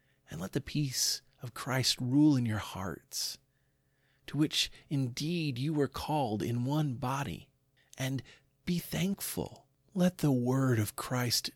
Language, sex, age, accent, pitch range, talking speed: English, male, 40-59, American, 105-135 Hz, 140 wpm